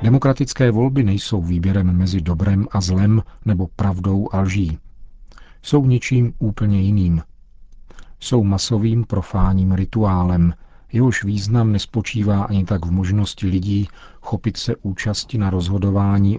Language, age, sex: Czech, 40-59, male